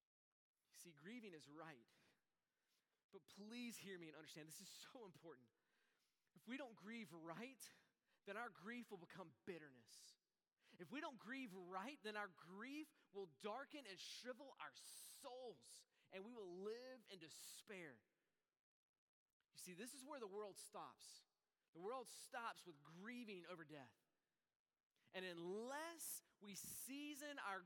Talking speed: 140 wpm